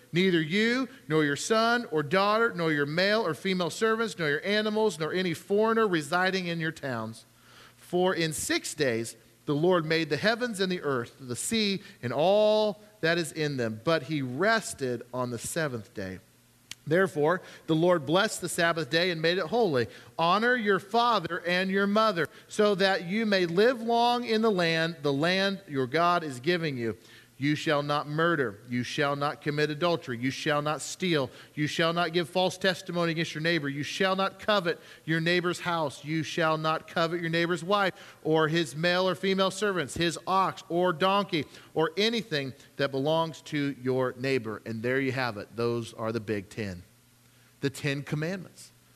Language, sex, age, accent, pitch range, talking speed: English, male, 40-59, American, 140-190 Hz, 185 wpm